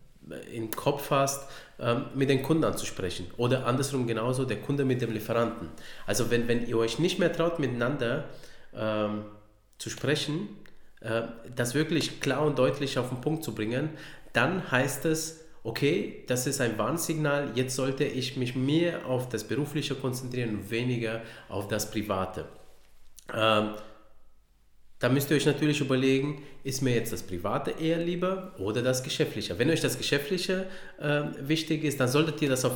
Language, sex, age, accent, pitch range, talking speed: German, male, 30-49, Austrian, 110-145 Hz, 165 wpm